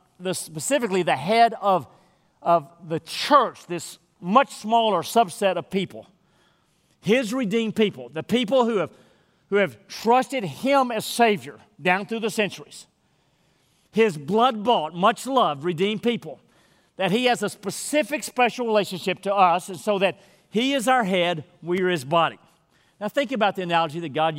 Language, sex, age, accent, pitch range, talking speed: English, male, 40-59, American, 170-235 Hz, 155 wpm